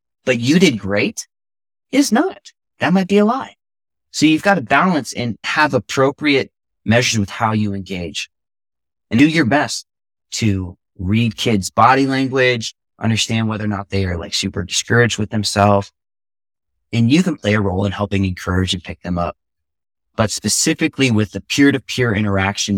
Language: English